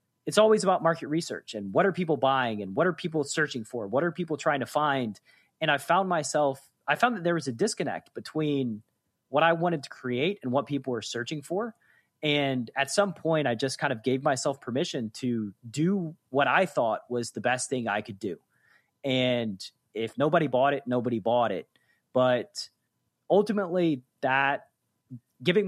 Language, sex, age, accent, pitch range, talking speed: English, male, 30-49, American, 120-165 Hz, 185 wpm